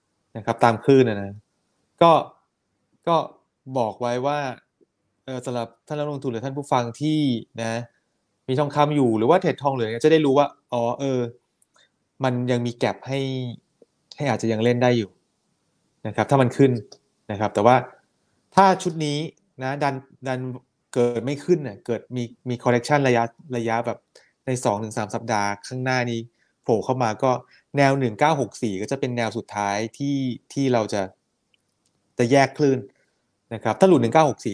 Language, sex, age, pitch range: Thai, male, 20-39, 110-135 Hz